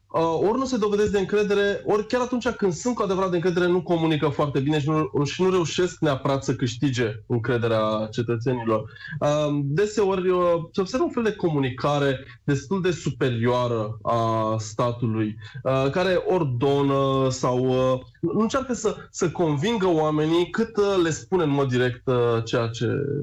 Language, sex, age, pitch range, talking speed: Romanian, male, 20-39, 120-185 Hz, 150 wpm